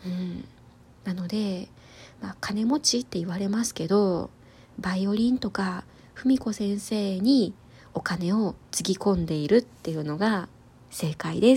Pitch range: 185-235 Hz